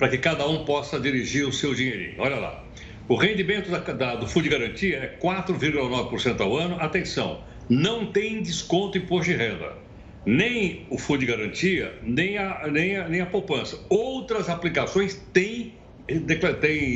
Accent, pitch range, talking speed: Brazilian, 140-190 Hz, 165 wpm